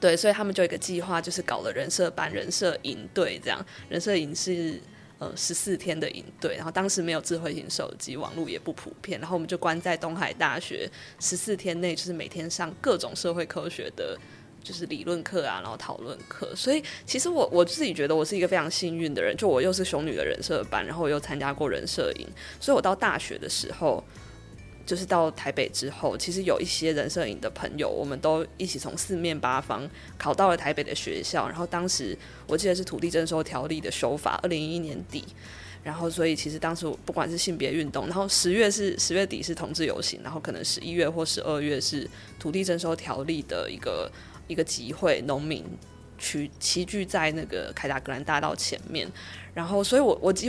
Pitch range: 155-180 Hz